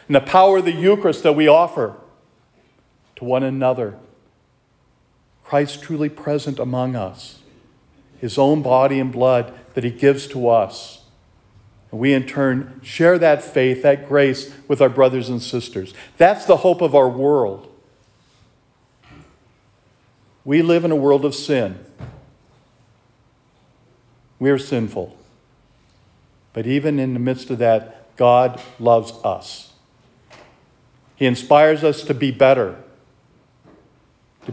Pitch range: 125-150 Hz